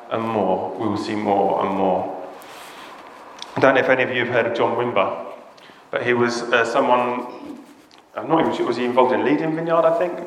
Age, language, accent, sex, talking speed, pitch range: 30-49, English, British, male, 215 wpm, 120-165 Hz